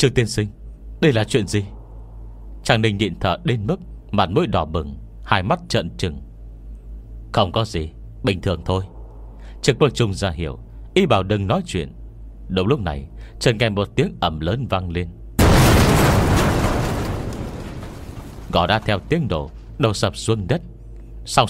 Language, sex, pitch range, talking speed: Vietnamese, male, 90-115 Hz, 160 wpm